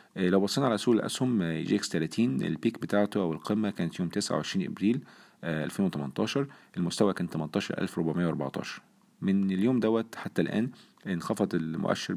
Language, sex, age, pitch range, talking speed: Arabic, male, 40-59, 80-100 Hz, 135 wpm